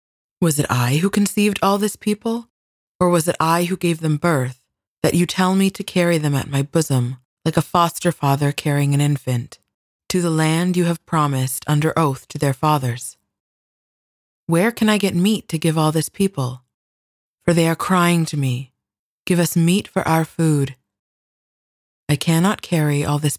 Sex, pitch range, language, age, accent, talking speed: female, 135-175 Hz, English, 20-39, American, 180 wpm